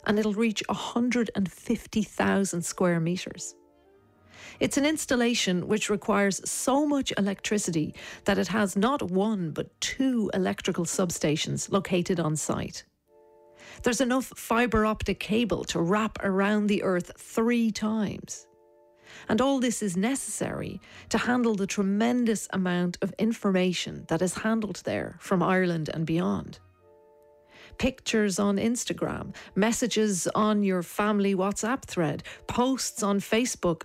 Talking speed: 125 wpm